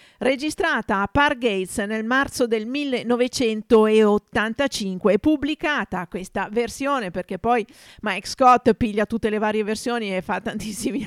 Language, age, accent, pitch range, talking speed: Italian, 50-69, native, 200-265 Hz, 130 wpm